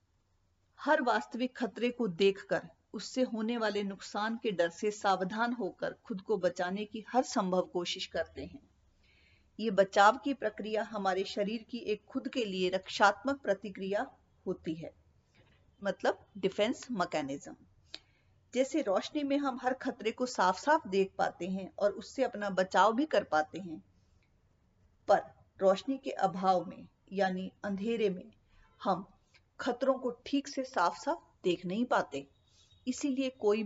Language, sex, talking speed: Hindi, female, 145 wpm